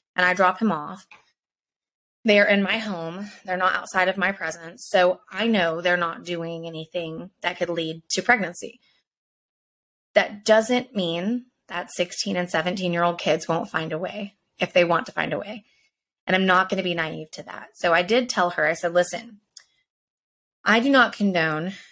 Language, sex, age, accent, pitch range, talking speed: English, female, 20-39, American, 165-205 Hz, 185 wpm